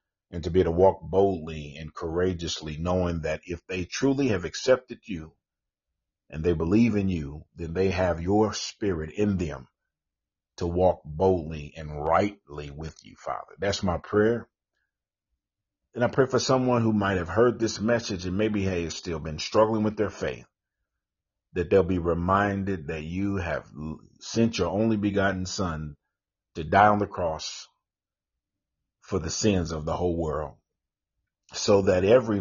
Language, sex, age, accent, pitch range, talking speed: English, male, 50-69, American, 80-100 Hz, 160 wpm